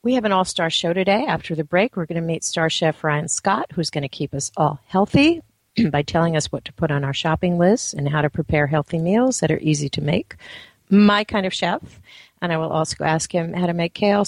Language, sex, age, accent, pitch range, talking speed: English, female, 50-69, American, 155-200 Hz, 250 wpm